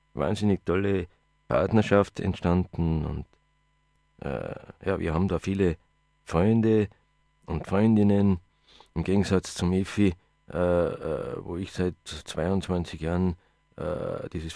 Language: German